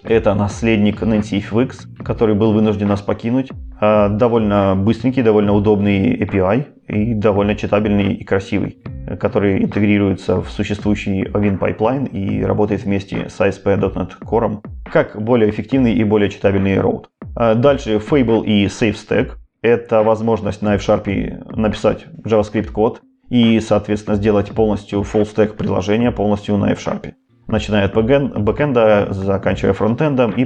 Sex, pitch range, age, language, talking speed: male, 100-115 Hz, 20-39, Russian, 130 wpm